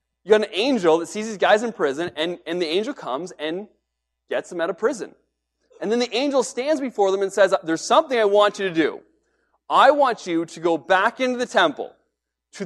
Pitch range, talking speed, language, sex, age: 150-225 Hz, 225 wpm, English, male, 30-49